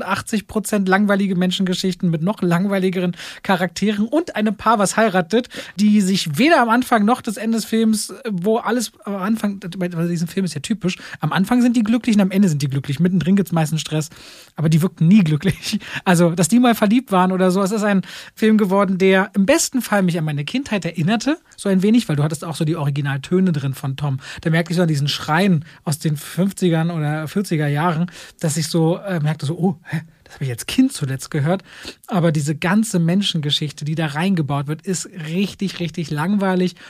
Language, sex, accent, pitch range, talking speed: German, male, German, 160-210 Hz, 205 wpm